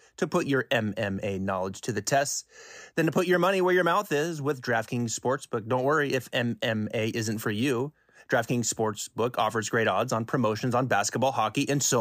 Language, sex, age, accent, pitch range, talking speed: English, male, 30-49, American, 110-145 Hz, 195 wpm